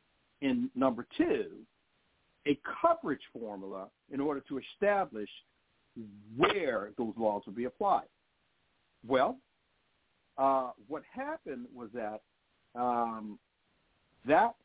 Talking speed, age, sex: 100 wpm, 50-69, male